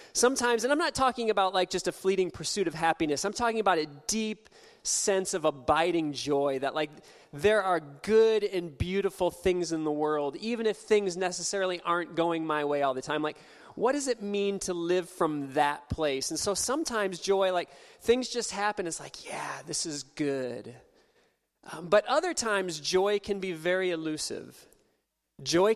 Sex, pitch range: male, 160-210 Hz